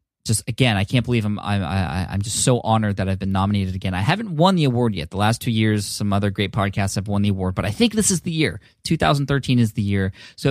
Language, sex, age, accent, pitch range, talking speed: English, male, 20-39, American, 100-130 Hz, 265 wpm